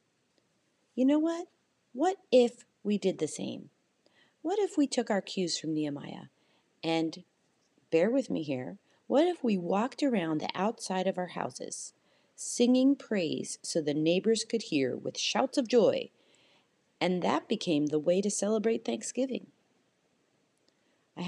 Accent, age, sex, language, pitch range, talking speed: American, 40-59, female, English, 165-245 Hz, 145 wpm